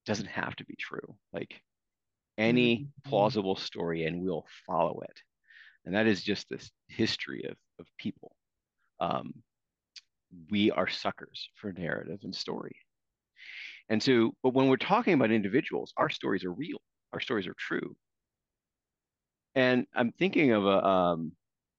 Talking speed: 145 wpm